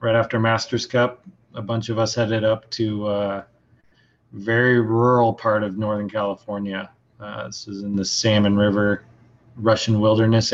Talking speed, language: 155 wpm, English